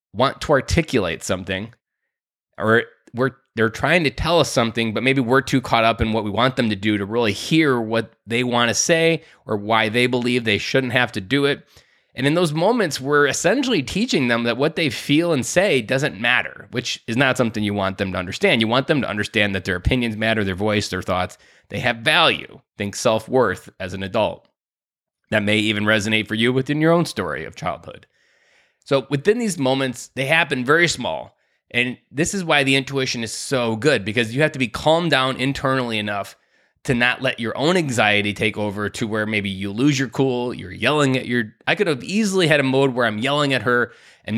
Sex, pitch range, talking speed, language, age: male, 110-140 Hz, 215 wpm, English, 20-39